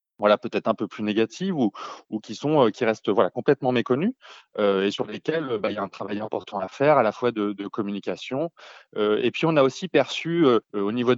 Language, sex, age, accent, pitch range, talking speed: French, male, 30-49, French, 100-125 Hz, 235 wpm